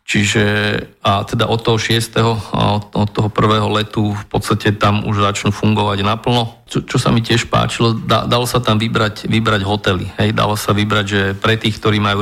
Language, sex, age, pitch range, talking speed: Slovak, male, 40-59, 105-115 Hz, 190 wpm